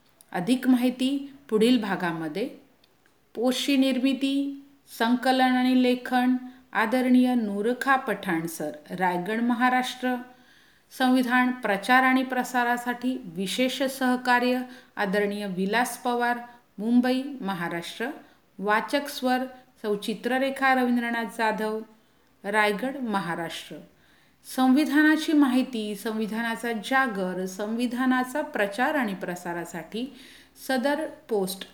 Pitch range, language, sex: 195-260 Hz, Hindi, female